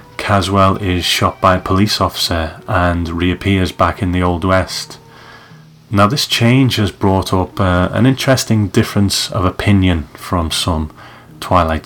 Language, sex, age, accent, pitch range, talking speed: English, male, 30-49, British, 90-110 Hz, 145 wpm